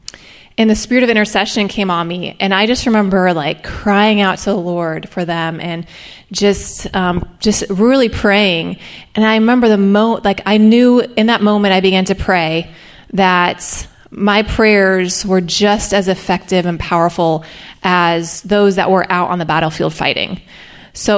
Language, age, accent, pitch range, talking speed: English, 20-39, American, 175-210 Hz, 170 wpm